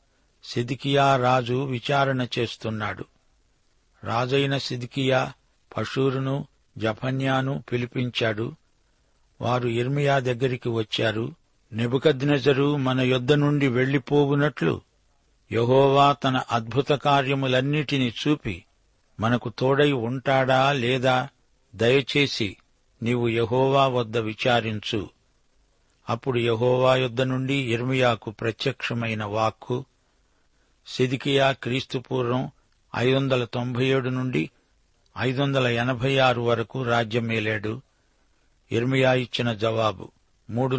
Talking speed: 80 wpm